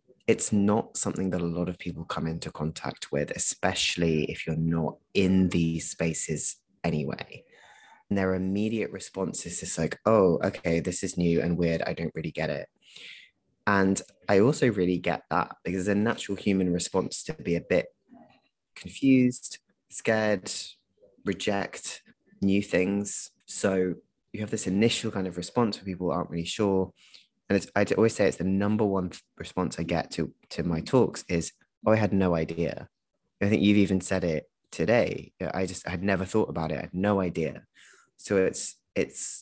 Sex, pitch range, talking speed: male, 85-100 Hz, 180 wpm